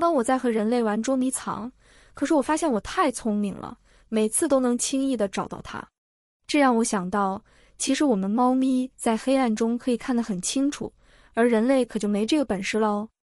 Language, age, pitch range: Chinese, 20-39, 210-265 Hz